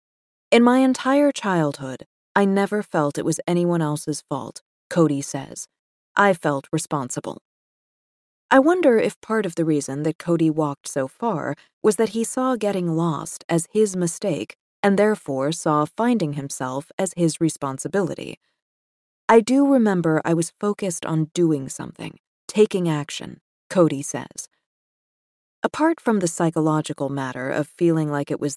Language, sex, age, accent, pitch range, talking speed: English, female, 30-49, American, 150-195 Hz, 145 wpm